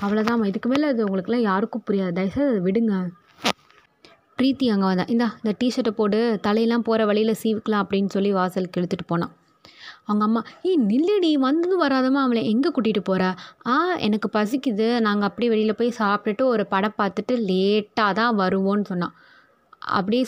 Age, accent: 20-39, native